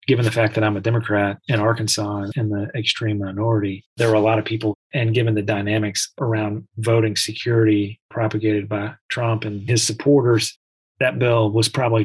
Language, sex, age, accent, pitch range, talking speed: English, male, 30-49, American, 110-120 Hz, 180 wpm